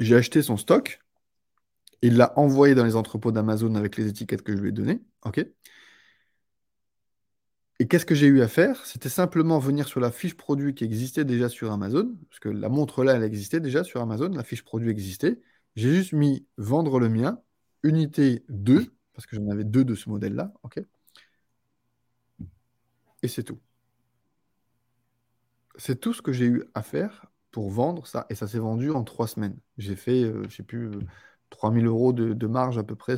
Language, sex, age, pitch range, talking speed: French, male, 20-39, 110-135 Hz, 190 wpm